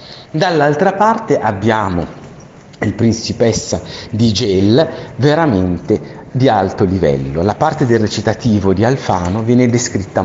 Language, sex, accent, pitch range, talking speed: Italian, male, native, 100-140 Hz, 110 wpm